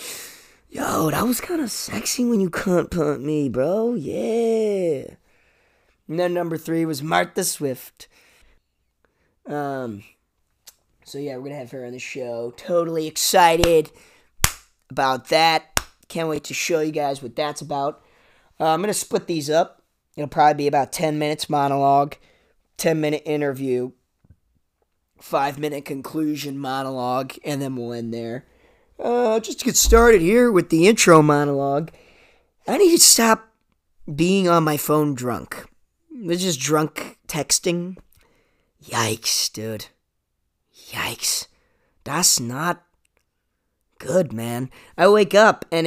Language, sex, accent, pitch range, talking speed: English, male, American, 135-175 Hz, 135 wpm